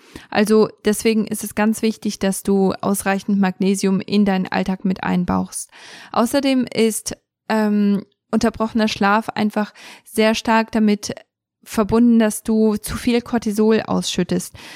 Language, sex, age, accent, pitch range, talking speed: German, female, 20-39, German, 200-225 Hz, 125 wpm